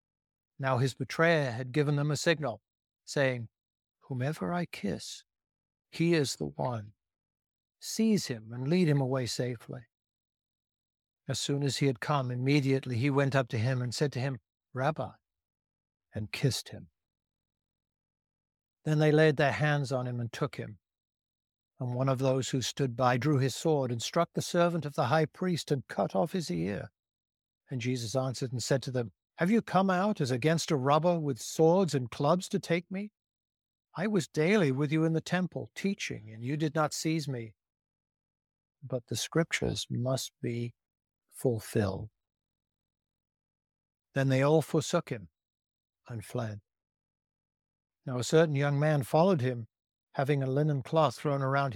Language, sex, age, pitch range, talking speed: English, male, 60-79, 95-150 Hz, 160 wpm